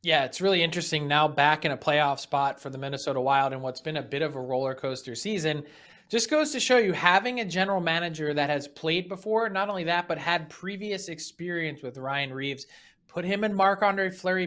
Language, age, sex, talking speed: English, 20-39, male, 215 wpm